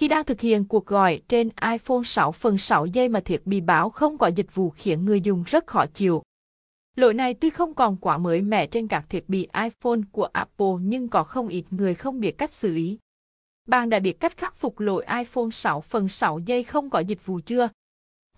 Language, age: Vietnamese, 20-39